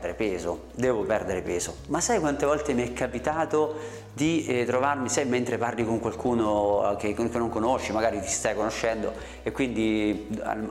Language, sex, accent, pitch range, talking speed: Italian, male, native, 110-160 Hz, 170 wpm